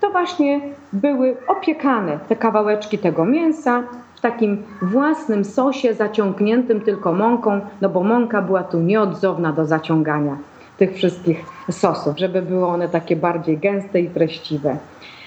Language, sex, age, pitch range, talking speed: Polish, female, 30-49, 185-250 Hz, 135 wpm